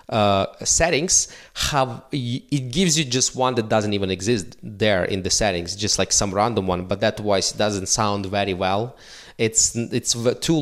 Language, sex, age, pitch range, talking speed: English, male, 20-39, 100-125 Hz, 175 wpm